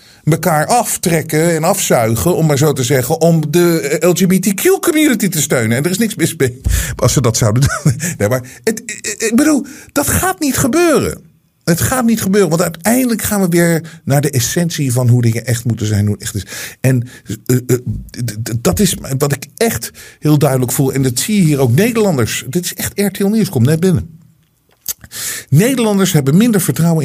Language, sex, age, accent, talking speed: Dutch, male, 50-69, Dutch, 185 wpm